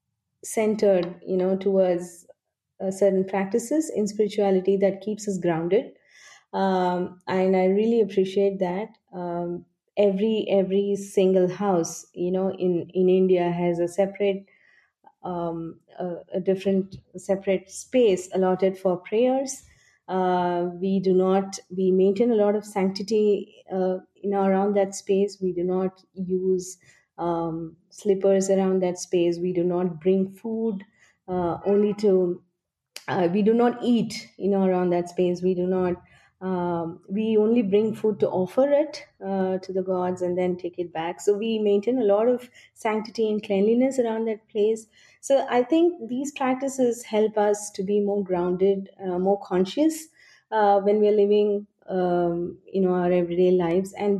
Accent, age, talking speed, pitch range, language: Indian, 20-39, 155 wpm, 180-210 Hz, English